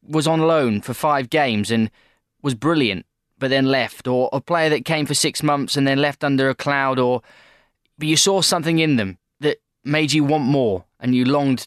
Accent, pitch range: British, 115-155 Hz